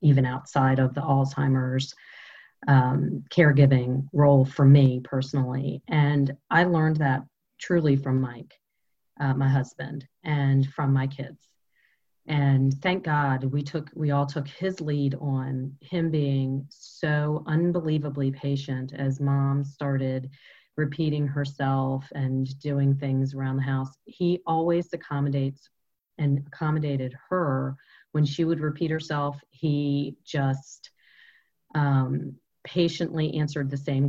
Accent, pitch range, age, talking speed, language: American, 135-155 Hz, 40-59, 120 wpm, English